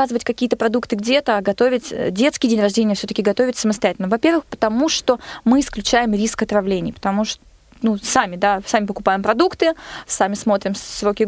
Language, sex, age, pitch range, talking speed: Russian, female, 20-39, 210-265 Hz, 155 wpm